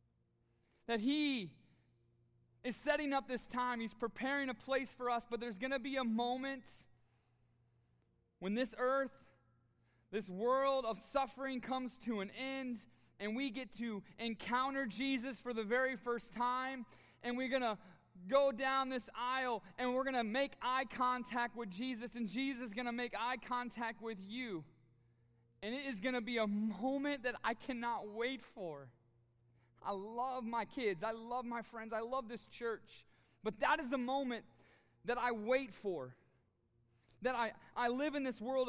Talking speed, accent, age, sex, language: 170 wpm, American, 20-39, male, English